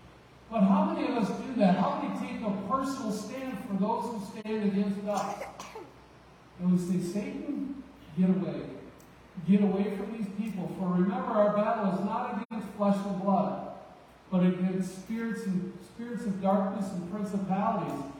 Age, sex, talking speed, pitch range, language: 50-69, male, 160 wpm, 160-210 Hz, English